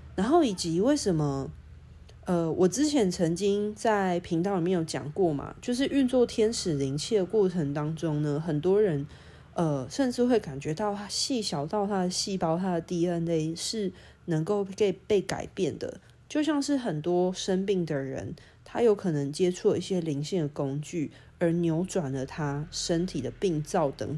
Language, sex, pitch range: Chinese, female, 155-205 Hz